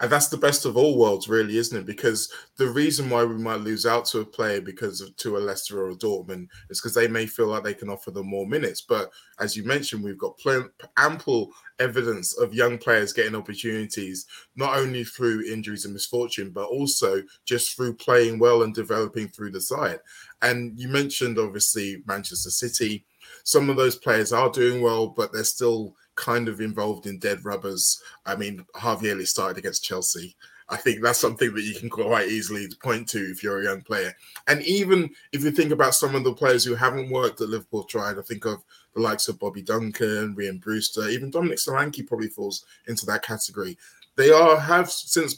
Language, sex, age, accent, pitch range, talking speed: English, male, 20-39, British, 105-130 Hz, 200 wpm